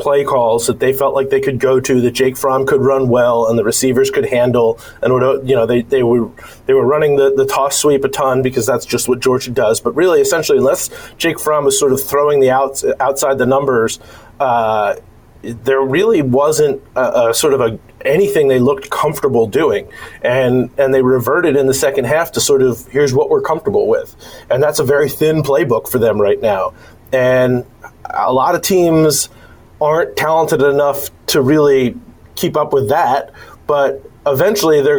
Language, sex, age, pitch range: English, male, 30-49, 125-160 Hz